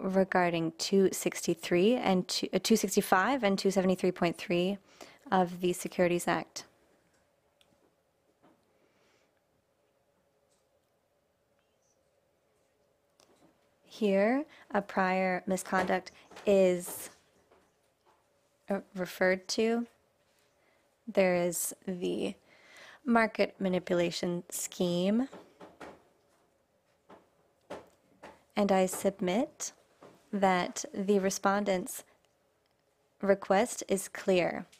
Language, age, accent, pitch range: English, 20-39, American, 185-210 Hz